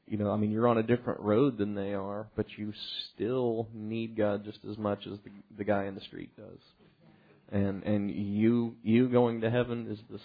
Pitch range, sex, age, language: 105-115 Hz, male, 30-49, English